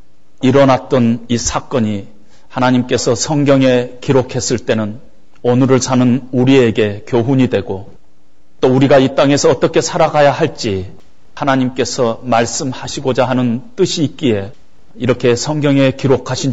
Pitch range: 110-130 Hz